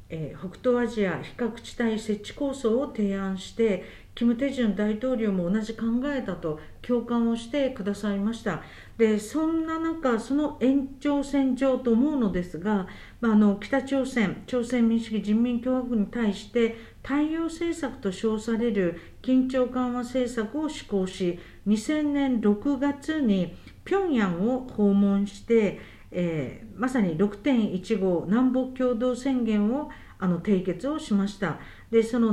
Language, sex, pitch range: Japanese, female, 200-255 Hz